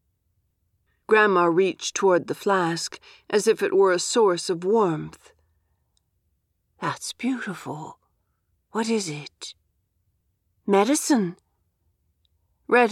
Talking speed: 95 wpm